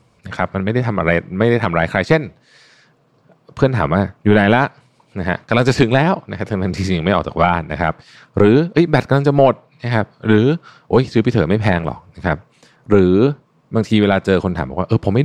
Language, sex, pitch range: Thai, male, 90-125 Hz